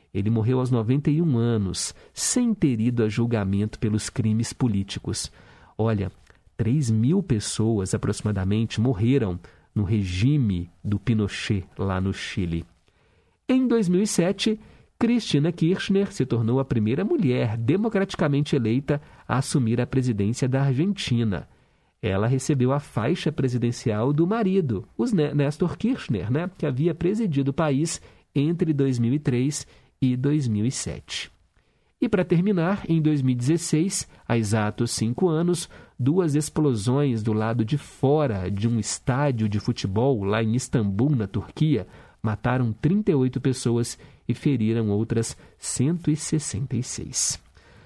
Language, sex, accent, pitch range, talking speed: Portuguese, male, Brazilian, 115-165 Hz, 120 wpm